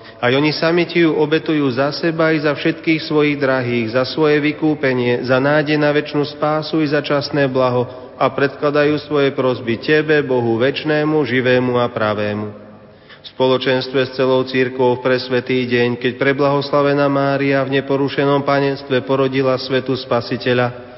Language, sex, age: Slovak, male, 40-59